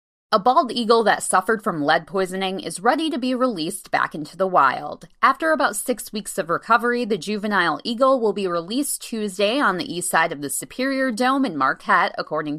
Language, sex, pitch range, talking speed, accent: English, female, 170-245 Hz, 195 wpm, American